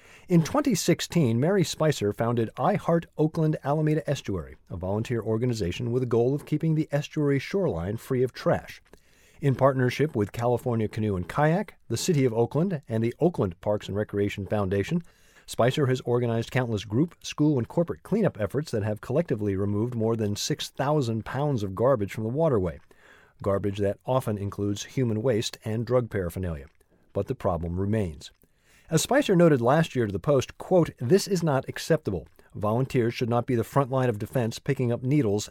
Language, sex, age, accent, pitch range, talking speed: English, male, 40-59, American, 105-140 Hz, 170 wpm